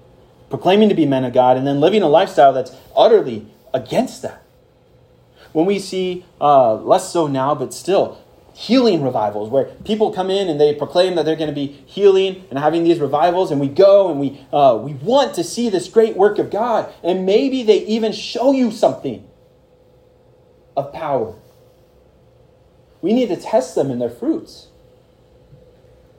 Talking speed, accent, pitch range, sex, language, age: 170 wpm, American, 135-220 Hz, male, English, 30-49